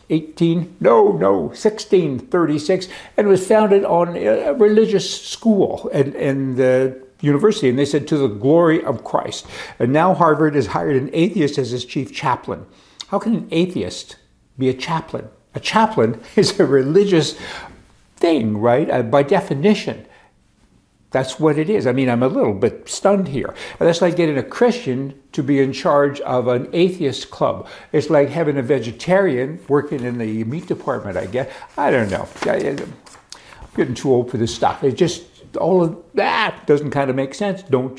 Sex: male